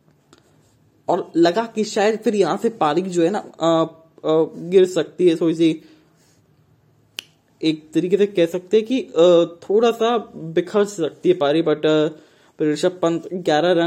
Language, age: English, 20-39